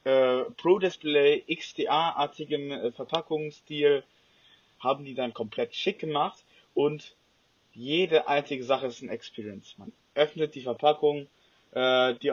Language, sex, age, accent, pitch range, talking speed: German, male, 20-39, German, 125-150 Hz, 110 wpm